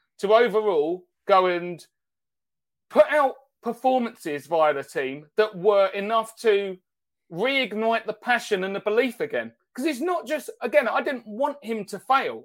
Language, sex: English, male